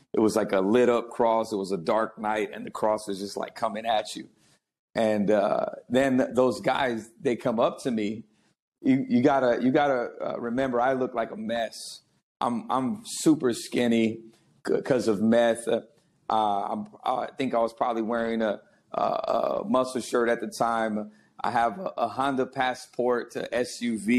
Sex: male